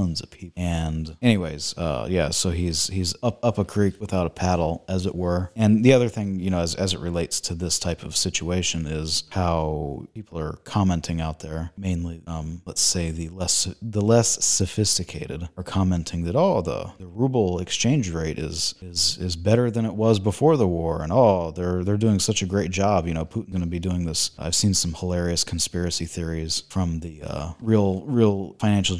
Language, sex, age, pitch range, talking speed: English, male, 30-49, 85-100 Hz, 200 wpm